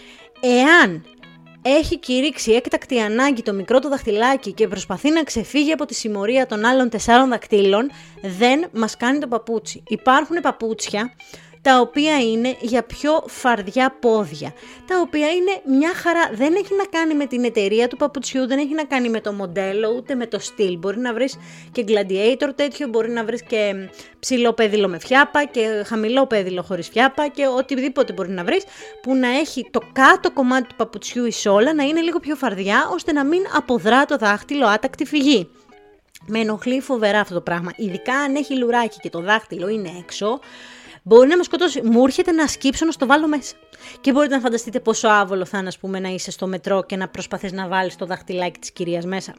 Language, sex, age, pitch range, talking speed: Greek, female, 20-39, 205-280 Hz, 190 wpm